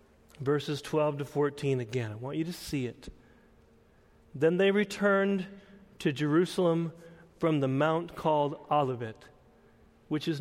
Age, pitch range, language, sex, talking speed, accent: 40-59, 135-185 Hz, English, male, 135 wpm, American